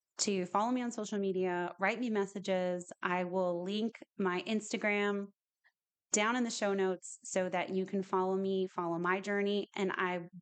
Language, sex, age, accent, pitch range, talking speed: English, female, 30-49, American, 175-200 Hz, 175 wpm